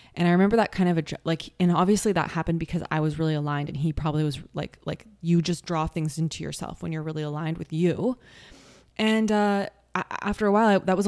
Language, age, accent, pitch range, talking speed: English, 20-39, American, 155-180 Hz, 230 wpm